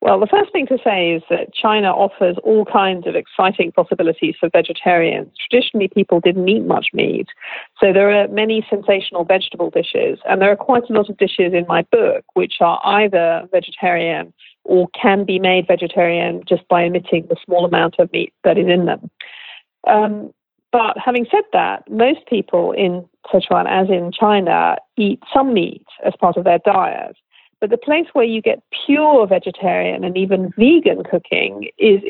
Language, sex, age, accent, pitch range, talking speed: English, female, 40-59, British, 180-235 Hz, 180 wpm